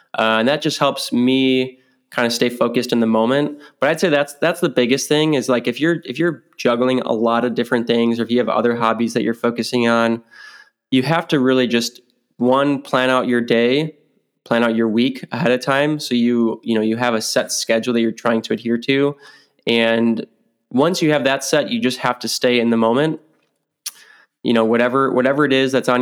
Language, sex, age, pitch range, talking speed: English, male, 20-39, 115-135 Hz, 225 wpm